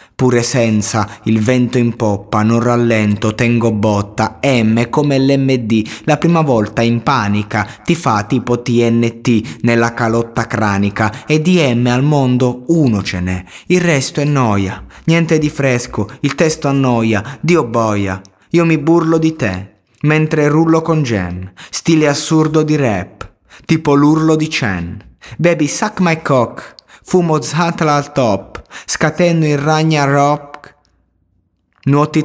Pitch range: 105-145 Hz